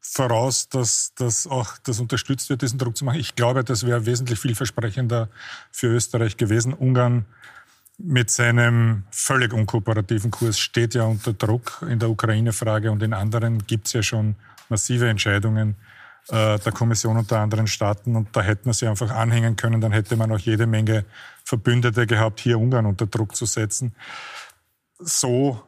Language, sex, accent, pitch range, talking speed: German, male, Austrian, 110-120 Hz, 165 wpm